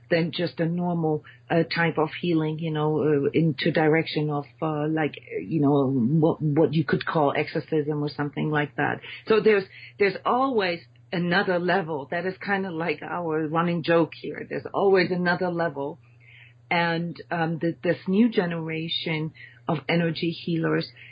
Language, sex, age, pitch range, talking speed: English, female, 40-59, 150-195 Hz, 160 wpm